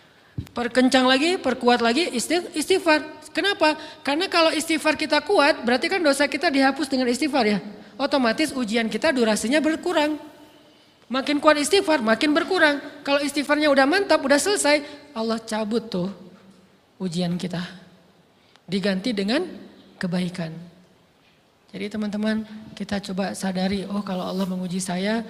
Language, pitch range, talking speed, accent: Indonesian, 195-285 Hz, 125 wpm, native